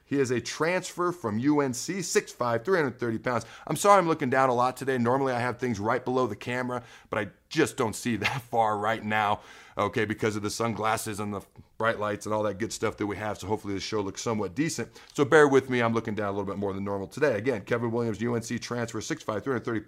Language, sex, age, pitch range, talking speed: English, male, 40-59, 110-140 Hz, 240 wpm